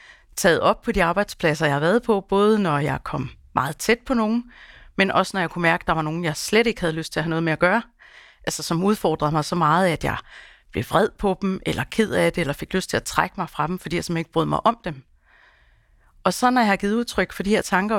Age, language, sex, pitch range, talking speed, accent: 30-49, Danish, female, 160-205 Hz, 275 wpm, native